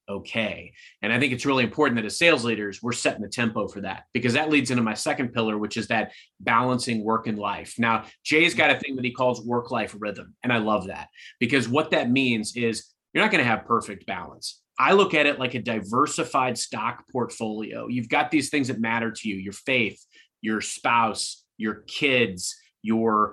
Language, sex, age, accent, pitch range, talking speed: English, male, 30-49, American, 110-135 Hz, 210 wpm